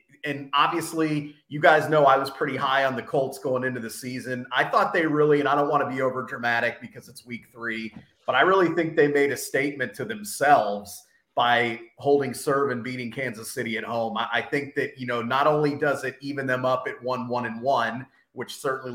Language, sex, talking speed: English, male, 220 wpm